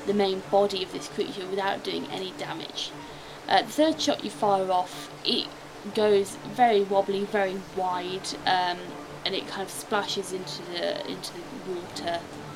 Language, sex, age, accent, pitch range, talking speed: English, female, 20-39, British, 190-245 Hz, 160 wpm